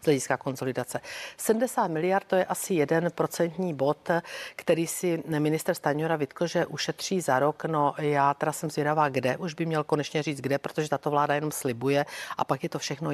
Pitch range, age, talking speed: 145-170 Hz, 50-69, 185 wpm